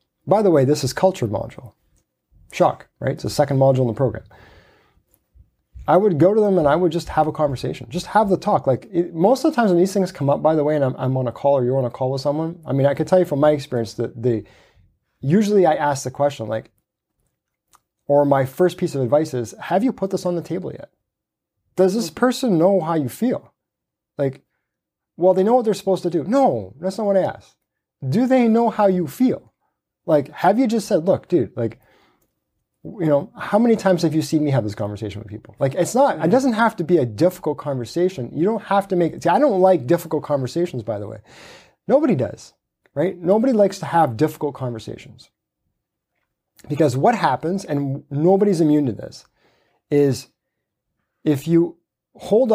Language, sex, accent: English, male, American